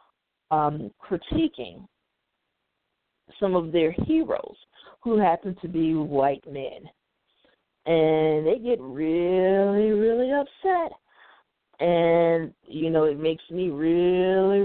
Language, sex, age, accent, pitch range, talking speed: English, female, 40-59, American, 160-215 Hz, 100 wpm